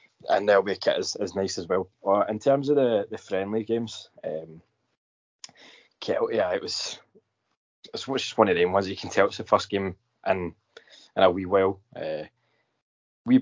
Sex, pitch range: male, 95-110 Hz